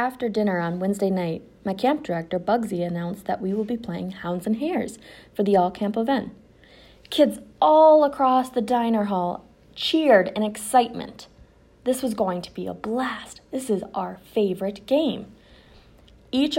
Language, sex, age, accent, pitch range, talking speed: English, female, 20-39, American, 185-225 Hz, 160 wpm